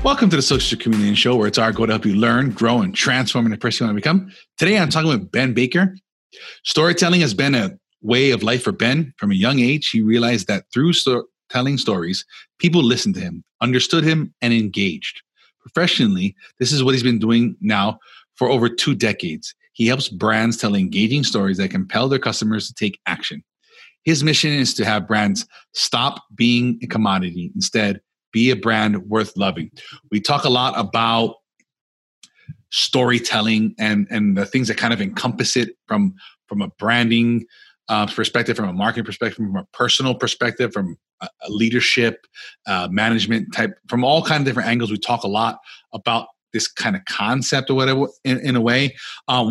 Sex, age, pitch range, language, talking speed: male, 30-49, 110-145 Hz, English, 190 wpm